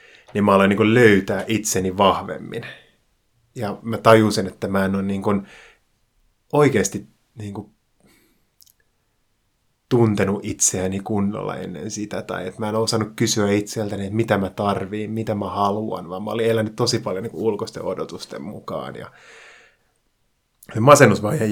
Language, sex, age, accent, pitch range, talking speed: Finnish, male, 30-49, native, 100-110 Hz, 135 wpm